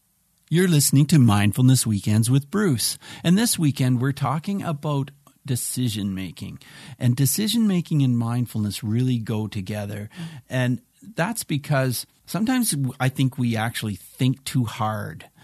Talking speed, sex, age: 125 wpm, male, 50-69